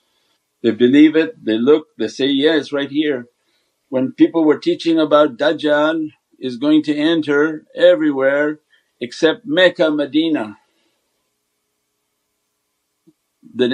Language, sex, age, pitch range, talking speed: English, male, 50-69, 120-165 Hz, 115 wpm